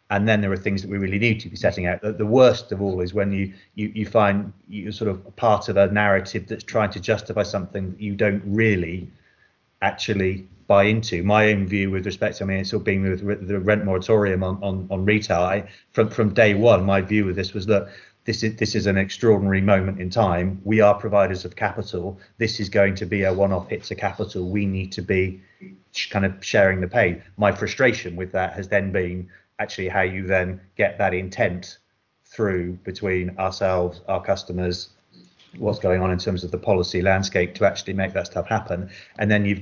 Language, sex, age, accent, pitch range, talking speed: English, male, 30-49, British, 95-105 Hz, 215 wpm